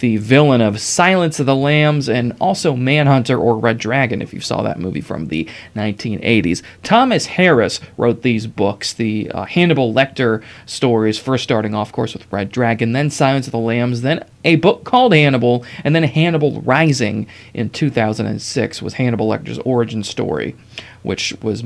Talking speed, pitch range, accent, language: 170 wpm, 110-140 Hz, American, English